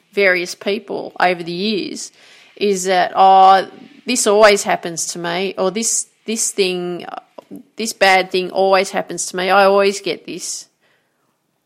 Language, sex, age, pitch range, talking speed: English, female, 30-49, 180-220 Hz, 145 wpm